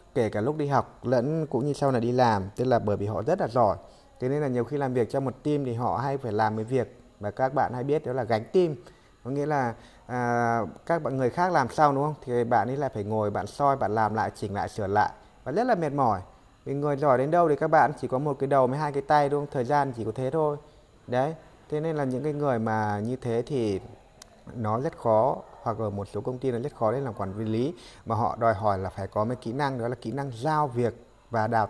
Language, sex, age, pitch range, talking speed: Vietnamese, male, 20-39, 110-140 Hz, 280 wpm